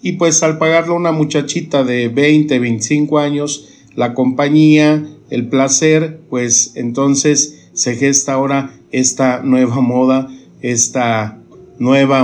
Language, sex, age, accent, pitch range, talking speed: Spanish, male, 50-69, Mexican, 115-135 Hz, 120 wpm